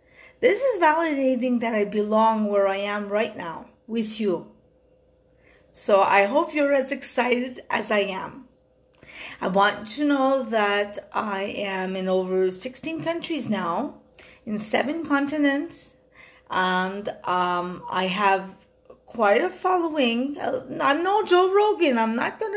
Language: English